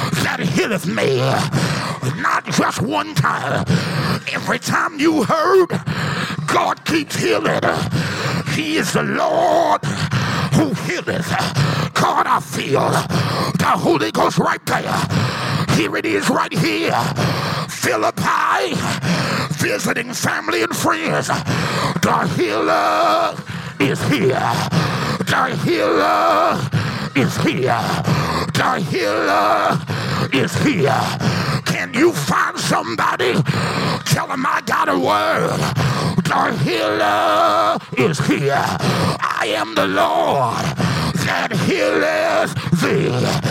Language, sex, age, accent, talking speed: English, male, 50-69, American, 100 wpm